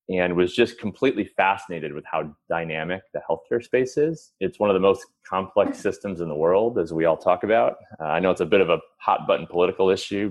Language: English